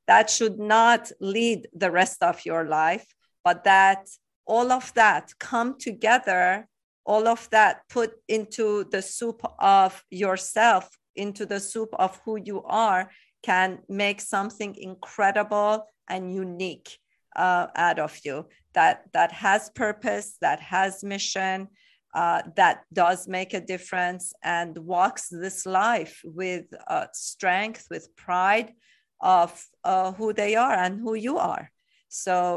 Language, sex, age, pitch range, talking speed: English, female, 40-59, 180-220 Hz, 135 wpm